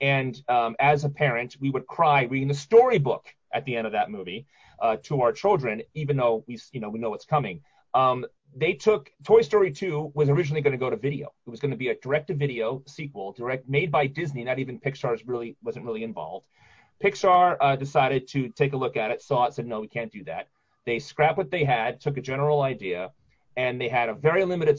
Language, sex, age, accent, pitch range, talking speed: English, male, 30-49, American, 125-175 Hz, 230 wpm